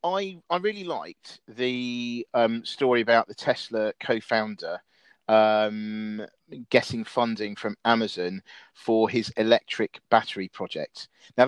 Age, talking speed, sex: 40-59, 115 wpm, male